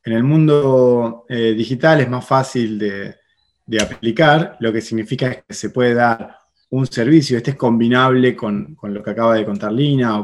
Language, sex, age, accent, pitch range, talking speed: Spanish, male, 20-39, Argentinian, 105-135 Hz, 190 wpm